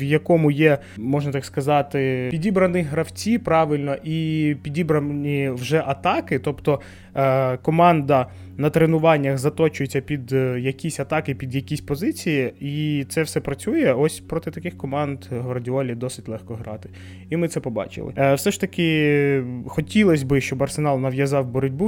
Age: 20-39